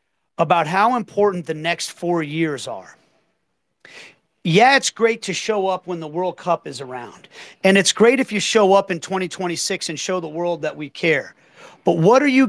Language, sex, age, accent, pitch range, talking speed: English, male, 40-59, American, 175-215 Hz, 190 wpm